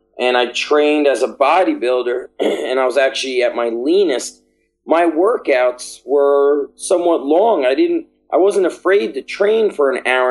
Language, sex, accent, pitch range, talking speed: German, male, American, 135-165 Hz, 165 wpm